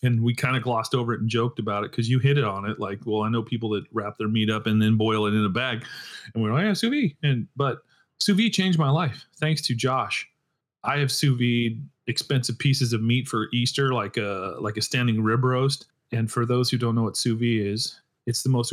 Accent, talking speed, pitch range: American, 260 wpm, 110-135 Hz